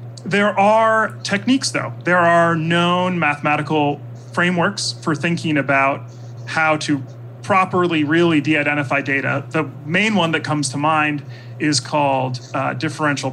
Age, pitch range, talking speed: 30-49, 130-165 Hz, 130 wpm